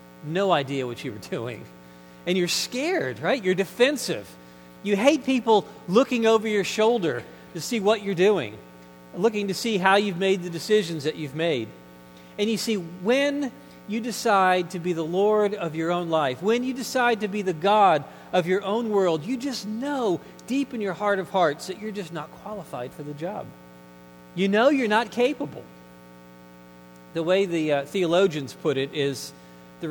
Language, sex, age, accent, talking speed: English, male, 40-59, American, 185 wpm